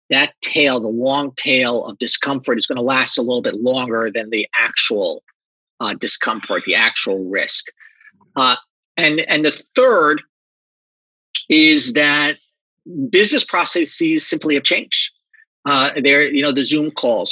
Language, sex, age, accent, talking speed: English, male, 40-59, American, 135 wpm